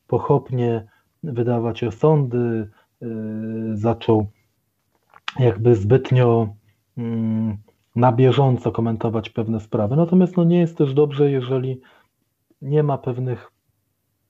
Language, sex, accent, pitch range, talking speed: Polish, male, native, 115-145 Hz, 85 wpm